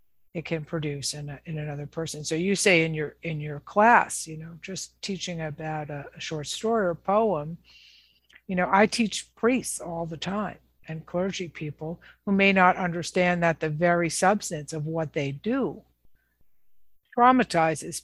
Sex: female